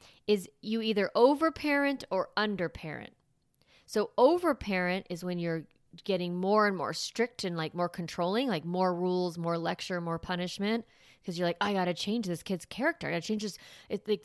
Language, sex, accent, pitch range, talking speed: English, female, American, 170-225 Hz, 175 wpm